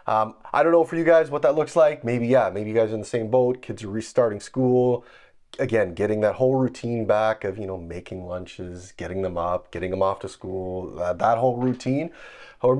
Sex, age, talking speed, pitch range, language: male, 30-49, 230 wpm, 100-135 Hz, English